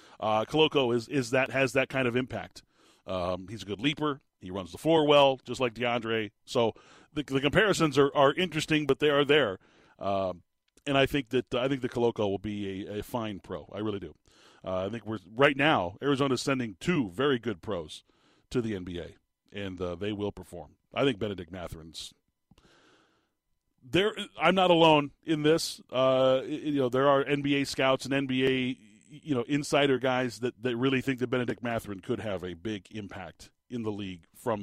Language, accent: English, American